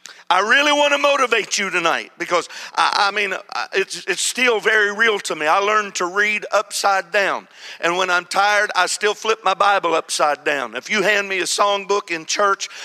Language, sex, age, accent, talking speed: English, male, 50-69, American, 205 wpm